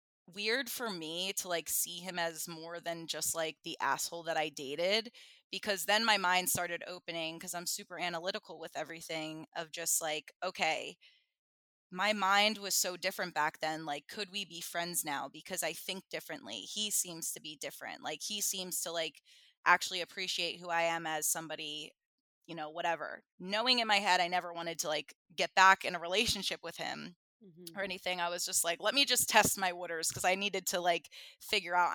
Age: 20-39